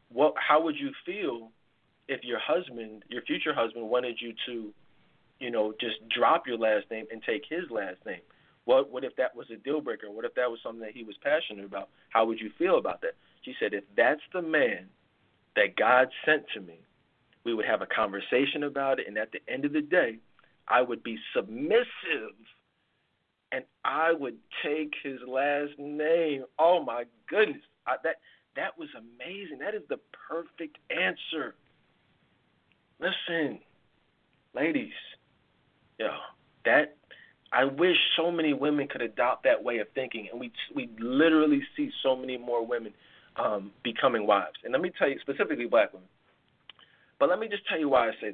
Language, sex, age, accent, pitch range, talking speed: English, male, 40-59, American, 115-190 Hz, 180 wpm